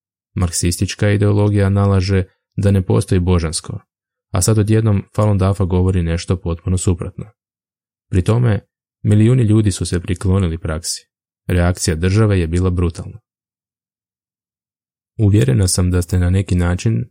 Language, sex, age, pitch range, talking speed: Croatian, male, 20-39, 90-100 Hz, 125 wpm